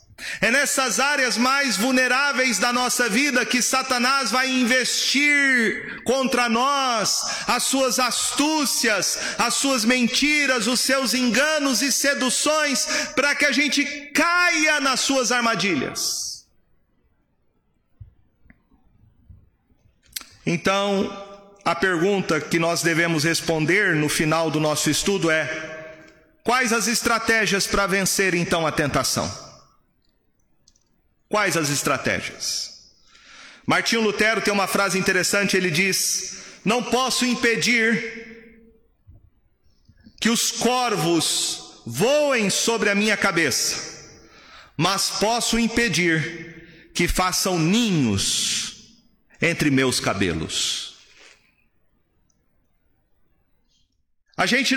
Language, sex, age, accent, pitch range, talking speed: Portuguese, male, 40-59, Brazilian, 185-255 Hz, 95 wpm